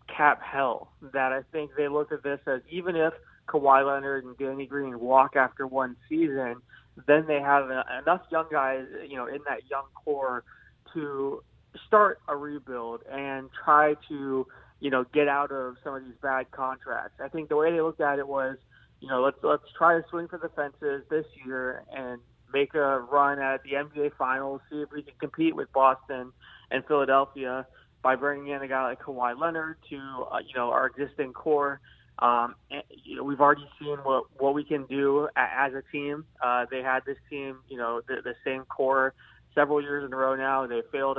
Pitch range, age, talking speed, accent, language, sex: 130-150 Hz, 20-39, 200 wpm, American, English, male